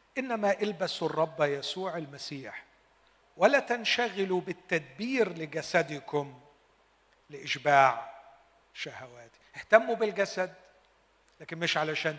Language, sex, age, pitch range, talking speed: Arabic, male, 50-69, 140-185 Hz, 80 wpm